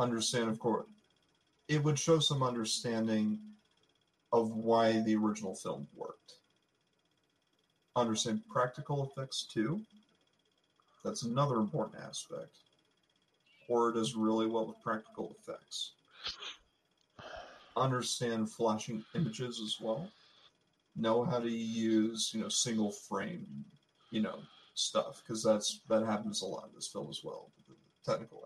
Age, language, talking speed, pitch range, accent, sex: 40-59, English, 120 wpm, 110-130 Hz, American, male